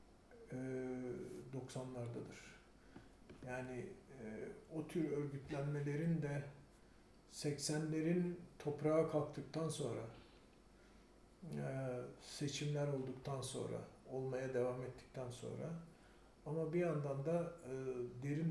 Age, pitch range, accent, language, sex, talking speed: 50-69, 125-155 Hz, native, Turkish, male, 70 wpm